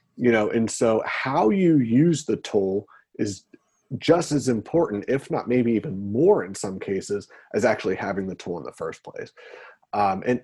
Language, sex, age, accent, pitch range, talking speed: English, male, 30-49, American, 100-125 Hz, 185 wpm